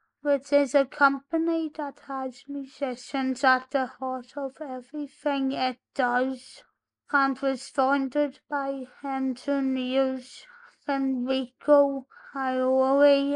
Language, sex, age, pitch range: English, female, 20-39, 255-280 Hz